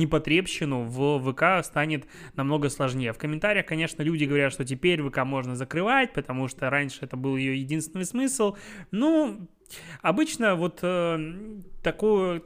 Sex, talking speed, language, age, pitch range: male, 140 wpm, Russian, 20-39, 135-170 Hz